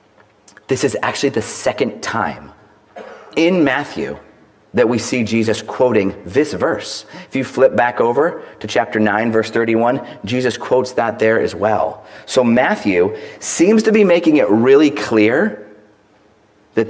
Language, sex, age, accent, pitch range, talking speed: English, male, 40-59, American, 105-125 Hz, 145 wpm